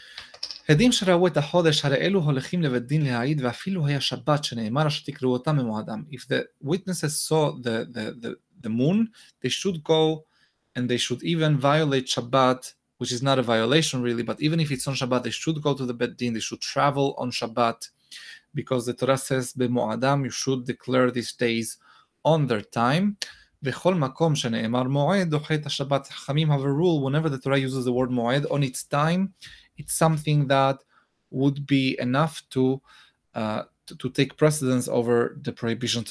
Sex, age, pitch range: male, 20-39, 120-150 Hz